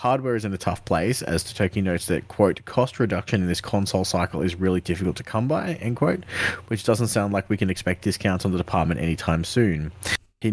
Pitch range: 90-110 Hz